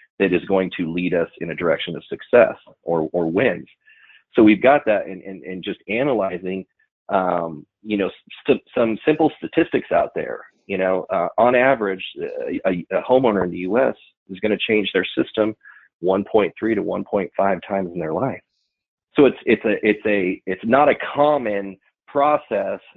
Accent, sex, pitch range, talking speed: American, male, 95-125 Hz, 175 wpm